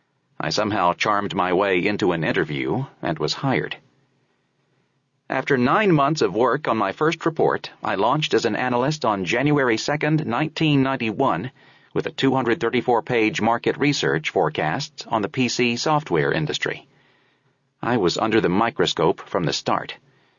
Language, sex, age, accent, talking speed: English, male, 40-59, American, 140 wpm